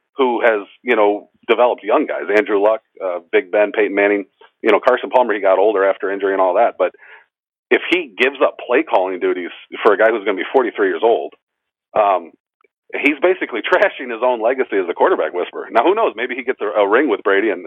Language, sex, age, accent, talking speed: English, male, 40-59, American, 220 wpm